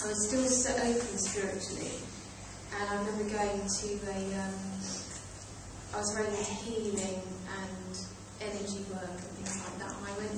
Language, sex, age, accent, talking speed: English, female, 30-49, British, 160 wpm